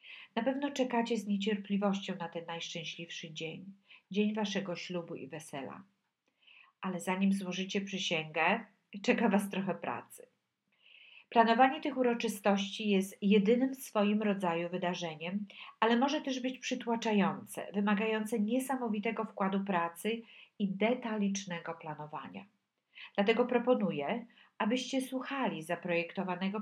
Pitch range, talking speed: 185-230 Hz, 110 wpm